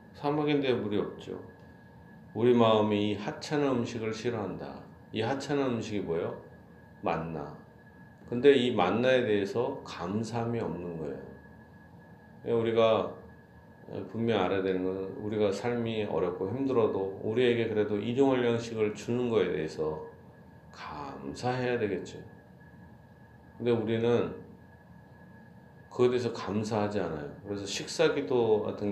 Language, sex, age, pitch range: Korean, male, 40-59, 95-120 Hz